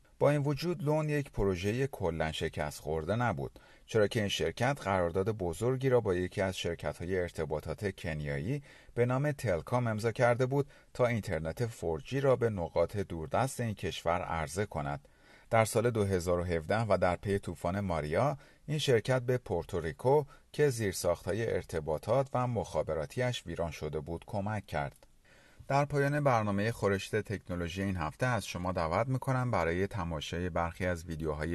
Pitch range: 85-120 Hz